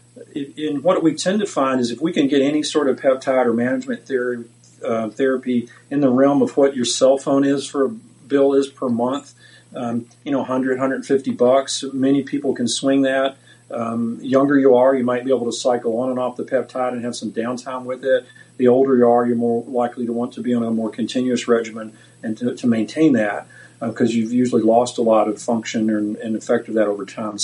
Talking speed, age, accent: 235 wpm, 40-59, American